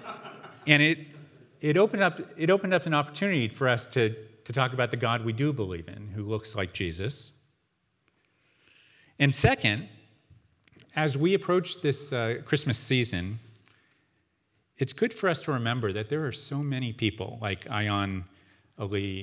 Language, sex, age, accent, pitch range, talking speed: English, male, 40-59, American, 105-135 Hz, 155 wpm